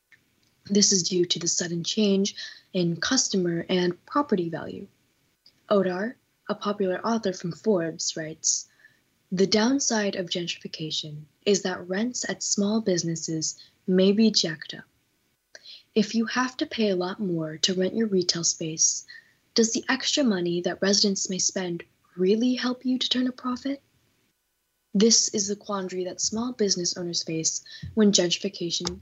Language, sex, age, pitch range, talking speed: English, female, 10-29, 165-215 Hz, 150 wpm